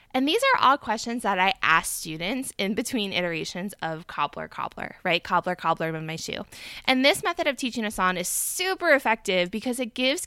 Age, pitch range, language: 20-39, 180-245 Hz, English